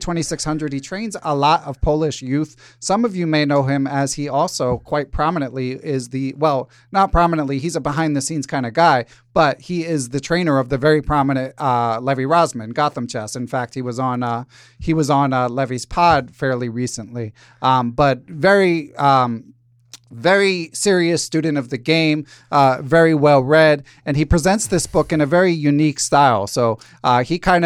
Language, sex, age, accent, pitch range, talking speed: English, male, 30-49, American, 130-160 Hz, 195 wpm